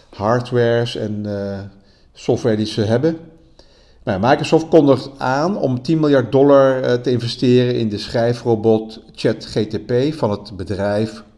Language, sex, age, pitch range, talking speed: Dutch, male, 50-69, 110-130 Hz, 125 wpm